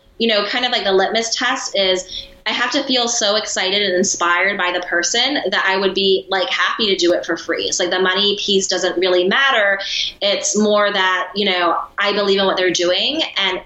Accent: American